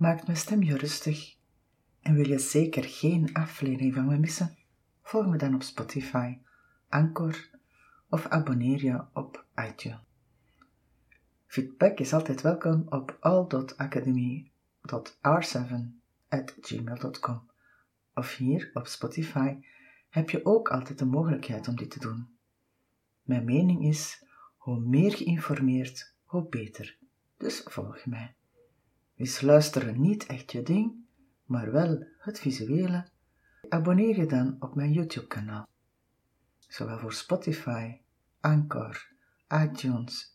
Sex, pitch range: female, 125-160 Hz